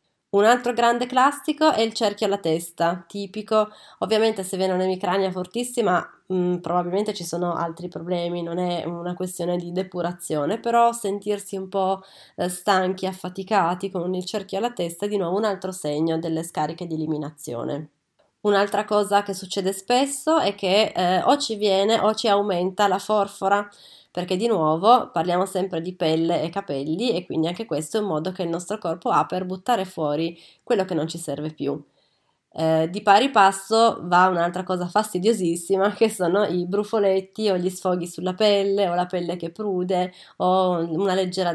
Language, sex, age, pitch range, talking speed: Italian, female, 30-49, 175-210 Hz, 170 wpm